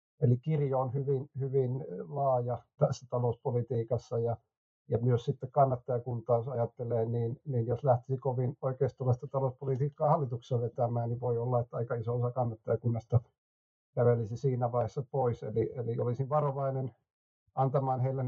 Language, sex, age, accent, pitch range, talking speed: Finnish, male, 50-69, native, 120-135 Hz, 130 wpm